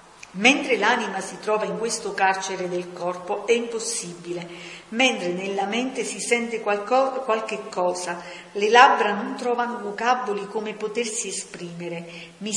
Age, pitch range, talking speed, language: 50-69, 185-230 Hz, 130 wpm, Italian